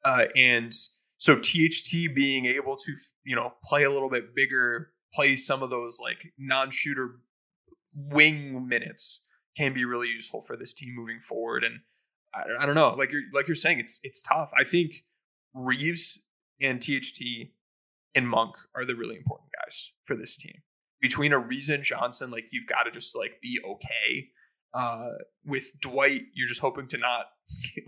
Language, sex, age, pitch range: English, male, 20-39, 125-145 Hz